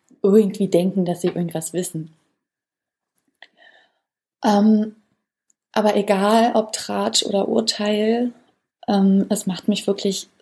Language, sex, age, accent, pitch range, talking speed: German, female, 20-39, German, 195-220 Hz, 105 wpm